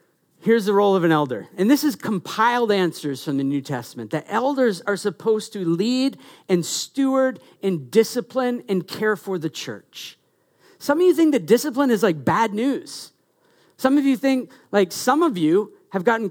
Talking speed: 185 wpm